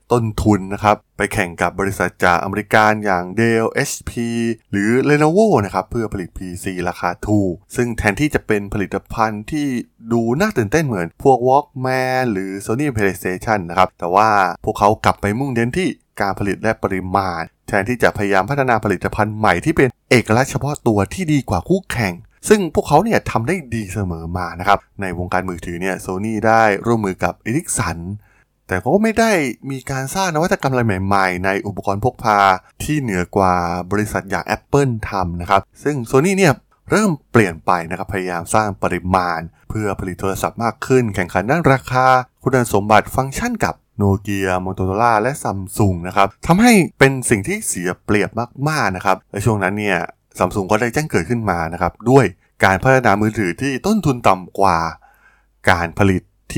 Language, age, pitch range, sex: Thai, 20-39, 95-125 Hz, male